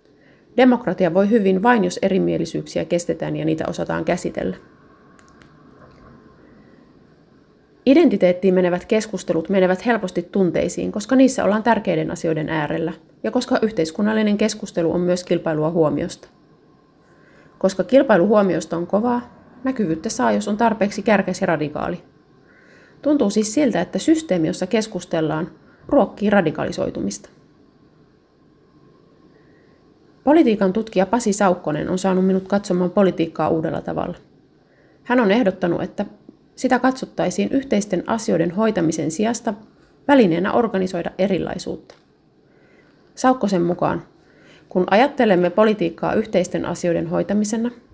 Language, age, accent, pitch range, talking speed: Finnish, 30-49, native, 175-230 Hz, 105 wpm